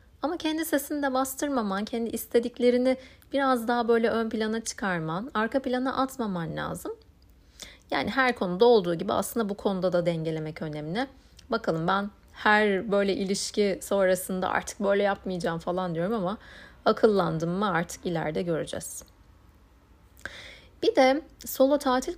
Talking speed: 135 wpm